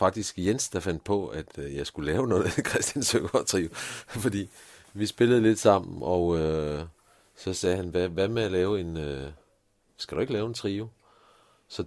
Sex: male